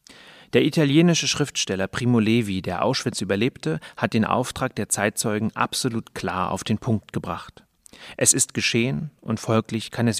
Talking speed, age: 155 wpm, 30-49